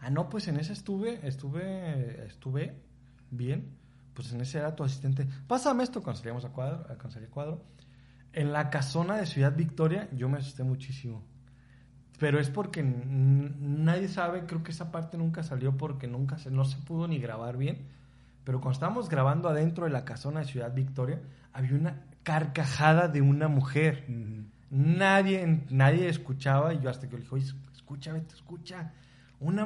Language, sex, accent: Spanish, male, Mexican